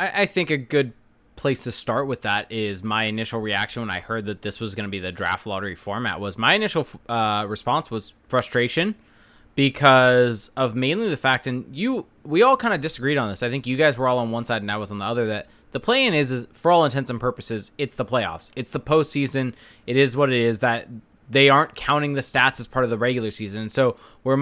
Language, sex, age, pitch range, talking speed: English, male, 20-39, 115-145 Hz, 240 wpm